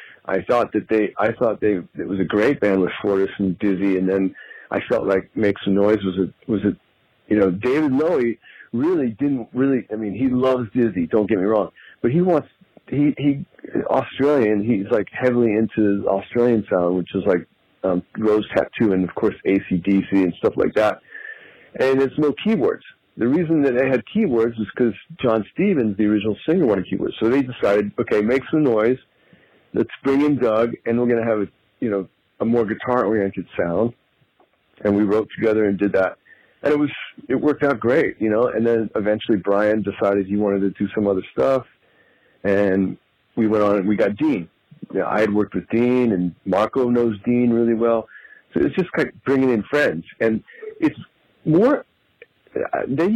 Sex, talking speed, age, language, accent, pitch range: male, 195 wpm, 50-69, English, American, 100-130 Hz